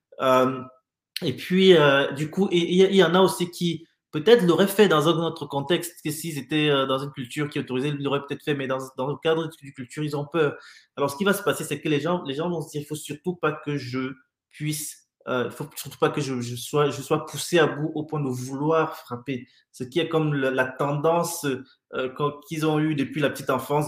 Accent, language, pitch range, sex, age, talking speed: French, French, 130-155 Hz, male, 20-39, 250 wpm